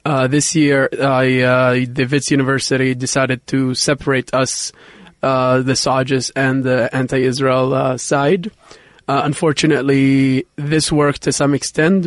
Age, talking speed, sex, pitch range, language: 20-39, 125 wpm, male, 130-145 Hz, English